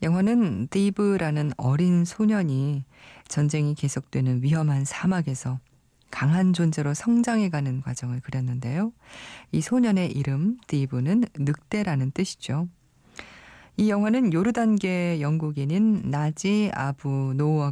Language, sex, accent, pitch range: Korean, female, native, 130-170 Hz